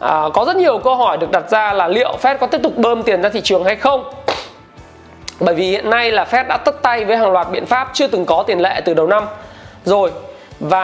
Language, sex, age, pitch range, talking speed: Vietnamese, male, 20-39, 185-245 Hz, 255 wpm